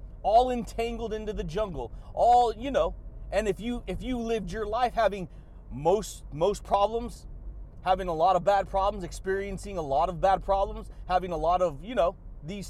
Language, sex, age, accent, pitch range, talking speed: English, male, 30-49, American, 190-235 Hz, 185 wpm